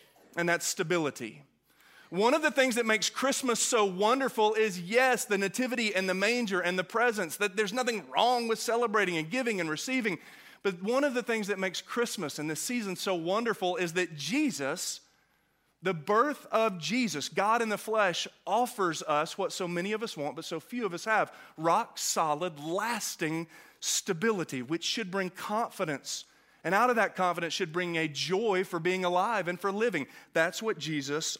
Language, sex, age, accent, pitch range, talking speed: English, male, 30-49, American, 180-230 Hz, 180 wpm